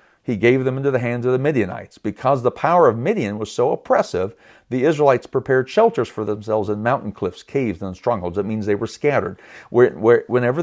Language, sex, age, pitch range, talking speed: English, male, 40-59, 110-145 Hz, 210 wpm